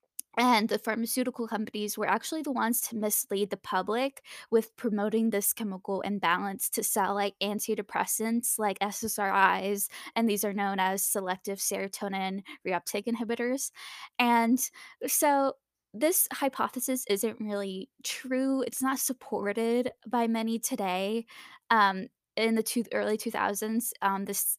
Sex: female